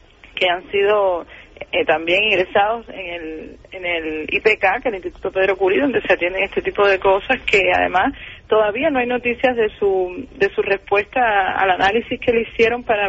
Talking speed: 190 wpm